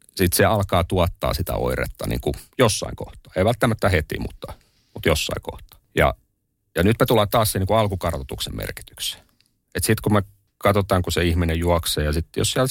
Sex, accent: male, native